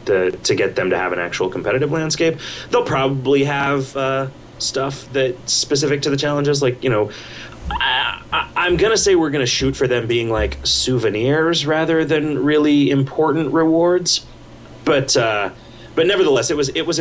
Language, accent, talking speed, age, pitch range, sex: English, American, 180 wpm, 30-49, 115-180 Hz, male